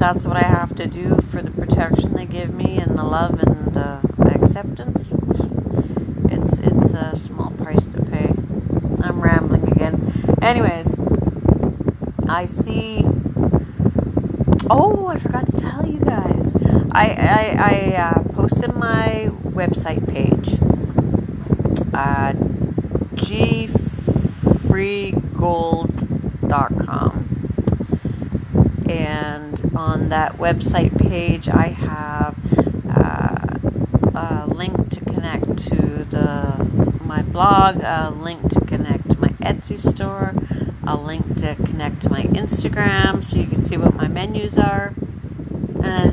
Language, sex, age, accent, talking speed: English, female, 40-59, American, 110 wpm